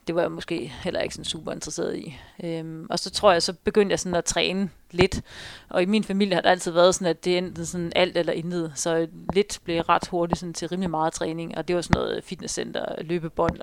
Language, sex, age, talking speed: Danish, female, 40-59, 240 wpm